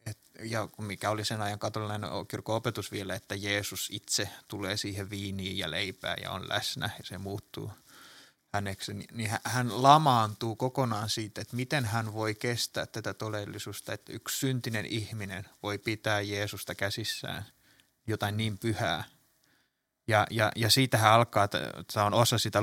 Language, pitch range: Finnish, 105-120 Hz